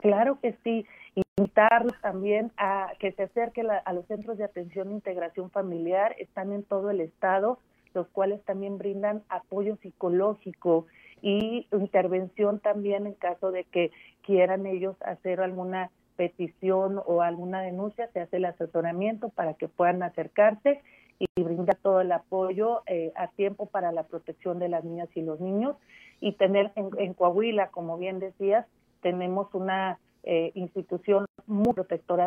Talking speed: 150 wpm